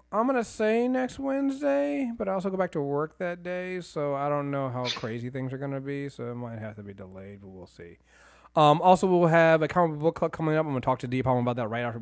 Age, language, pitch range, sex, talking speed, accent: 30-49, English, 115-165 Hz, male, 280 wpm, American